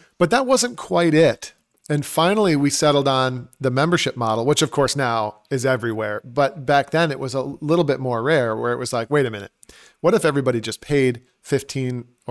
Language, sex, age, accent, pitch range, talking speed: English, male, 40-59, American, 125-155 Hz, 205 wpm